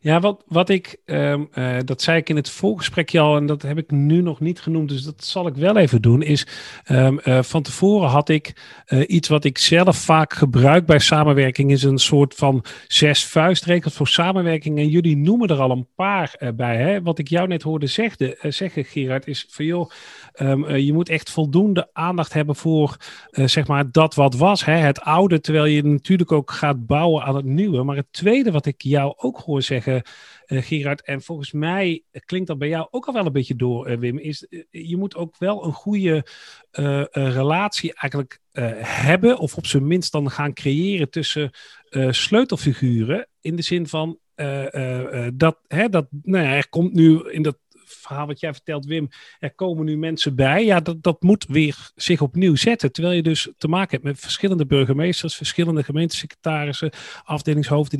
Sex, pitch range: male, 140-170 Hz